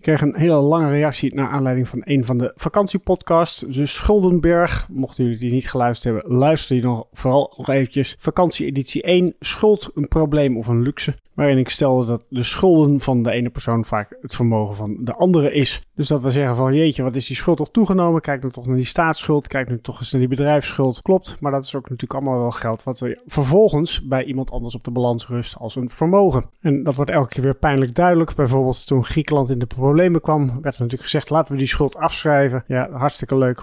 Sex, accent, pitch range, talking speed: male, Dutch, 125-150 Hz, 225 wpm